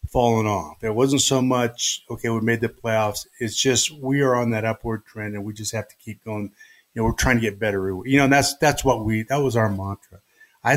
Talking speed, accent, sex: 245 wpm, American, male